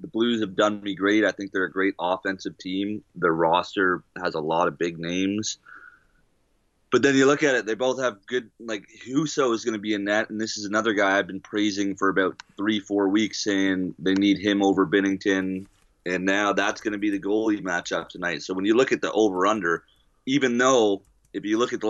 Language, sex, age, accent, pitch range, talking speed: English, male, 30-49, American, 90-105 Hz, 225 wpm